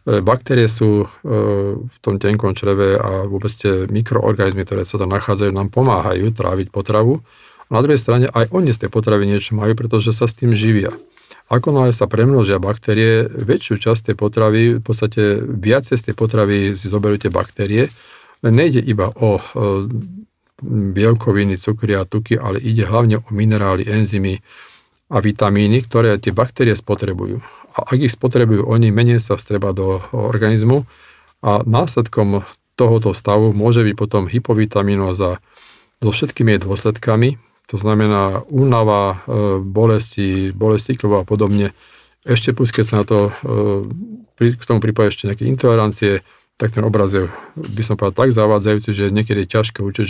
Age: 40-59